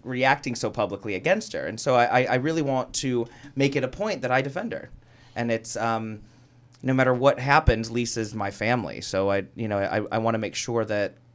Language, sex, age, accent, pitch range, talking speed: English, male, 30-49, American, 115-130 Hz, 210 wpm